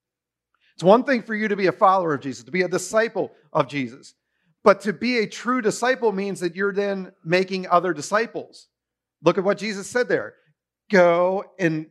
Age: 50-69